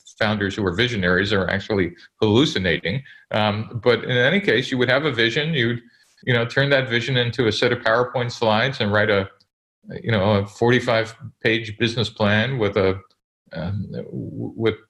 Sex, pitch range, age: male, 105-130 Hz, 40-59